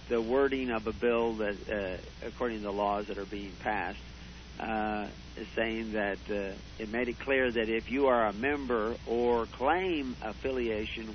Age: 60-79